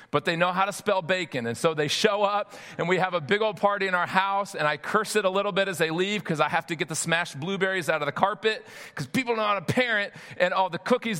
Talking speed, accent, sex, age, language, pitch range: 290 wpm, American, male, 40-59, English, 160-195 Hz